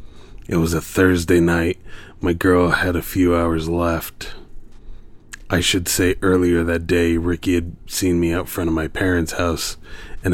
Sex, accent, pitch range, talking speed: male, American, 80-90 Hz, 170 wpm